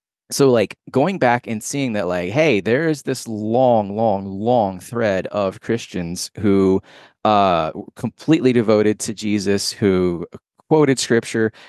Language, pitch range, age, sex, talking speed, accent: English, 95-115 Hz, 20-39, male, 140 wpm, American